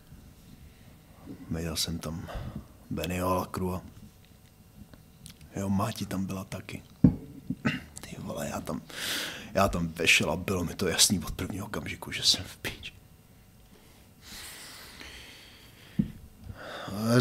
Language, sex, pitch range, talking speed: Czech, male, 80-105 Hz, 110 wpm